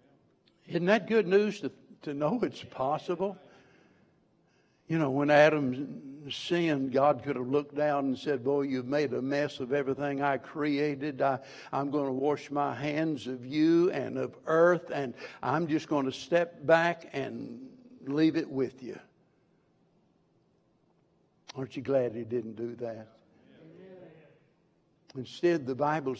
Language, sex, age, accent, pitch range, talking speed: English, male, 60-79, American, 135-175 Hz, 145 wpm